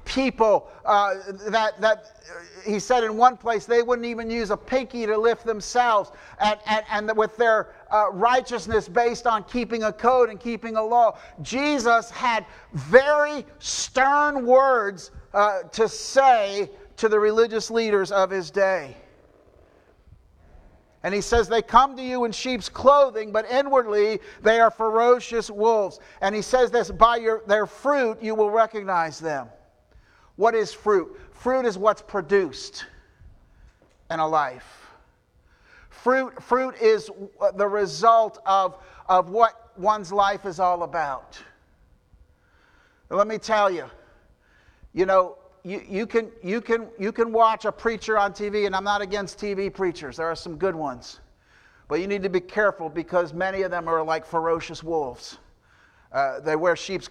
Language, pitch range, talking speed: English, 190-235 Hz, 150 wpm